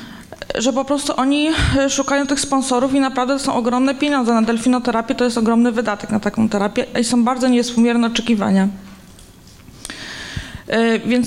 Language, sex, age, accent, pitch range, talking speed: Polish, female, 20-39, native, 230-265 Hz, 145 wpm